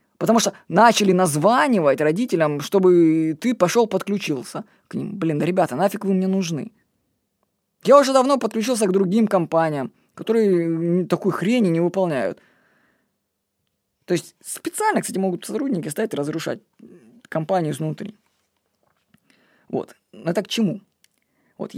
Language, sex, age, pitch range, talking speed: Russian, female, 20-39, 170-220 Hz, 125 wpm